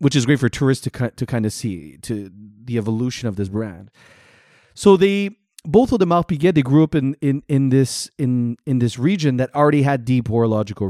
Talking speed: 210 wpm